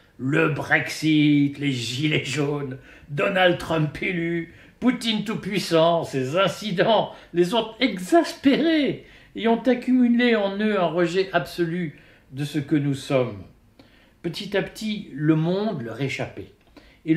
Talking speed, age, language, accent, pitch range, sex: 125 wpm, 60-79, French, French, 135-185 Hz, male